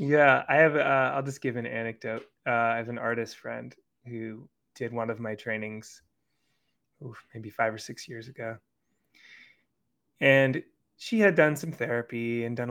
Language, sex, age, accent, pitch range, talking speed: English, male, 20-39, American, 110-120 Hz, 175 wpm